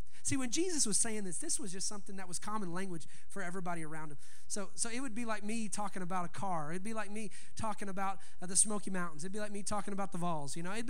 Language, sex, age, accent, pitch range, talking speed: English, male, 30-49, American, 190-230 Hz, 275 wpm